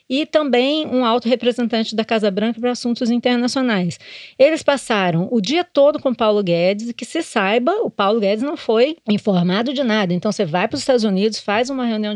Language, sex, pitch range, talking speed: Portuguese, female, 195-255 Hz, 205 wpm